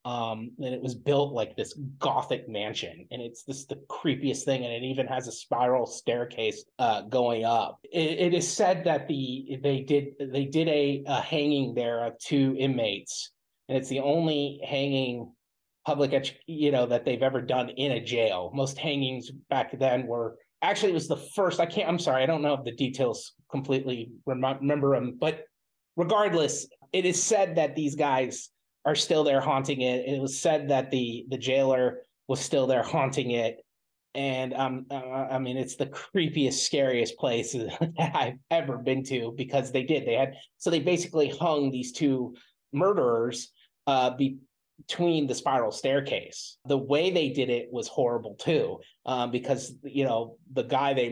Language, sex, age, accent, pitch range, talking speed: English, male, 30-49, American, 125-145 Hz, 180 wpm